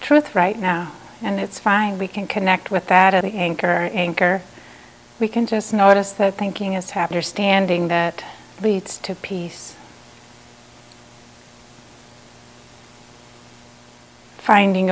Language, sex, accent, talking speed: English, female, American, 120 wpm